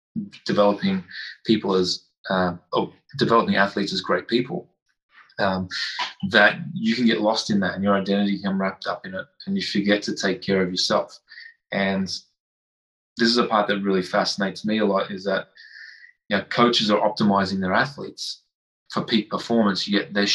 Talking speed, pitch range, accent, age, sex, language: 175 wpm, 95-105 Hz, Australian, 20-39, male, English